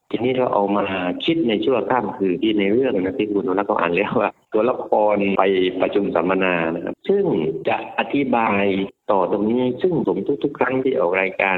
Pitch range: 100-130 Hz